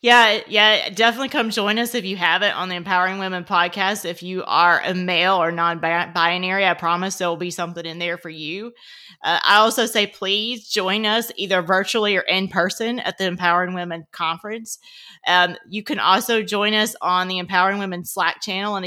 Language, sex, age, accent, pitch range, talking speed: English, female, 30-49, American, 170-205 Hz, 195 wpm